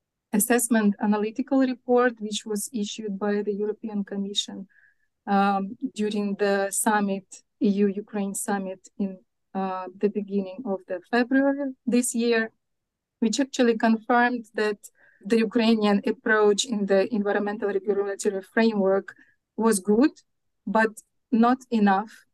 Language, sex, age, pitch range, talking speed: Ukrainian, female, 30-49, 200-235 Hz, 115 wpm